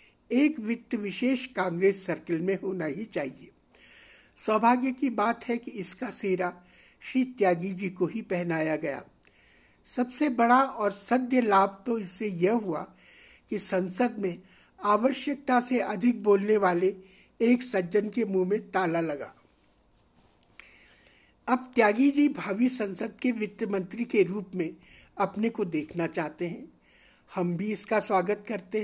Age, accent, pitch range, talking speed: 60-79, native, 185-245 Hz, 140 wpm